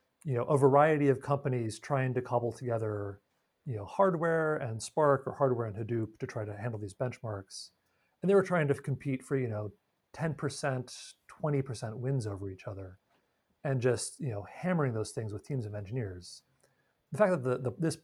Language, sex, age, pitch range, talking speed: English, male, 40-59, 110-145 Hz, 190 wpm